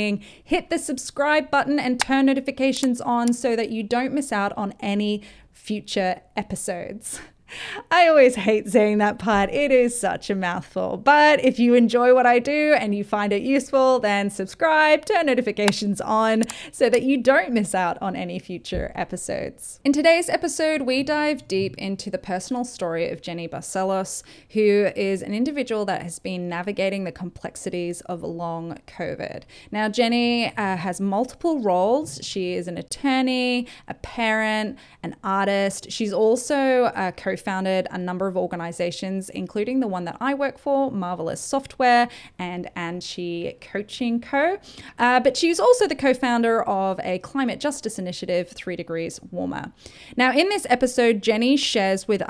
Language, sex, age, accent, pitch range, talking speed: English, female, 10-29, Australian, 190-260 Hz, 160 wpm